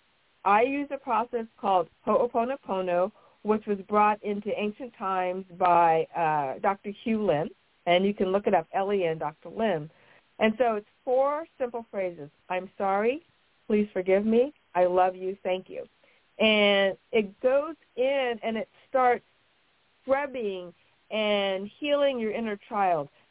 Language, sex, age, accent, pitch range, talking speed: English, female, 50-69, American, 190-245 Hz, 145 wpm